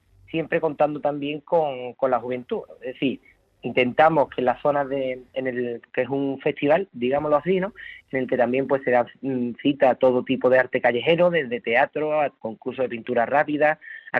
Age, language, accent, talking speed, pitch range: 30-49, Spanish, Spanish, 195 wpm, 125-145 Hz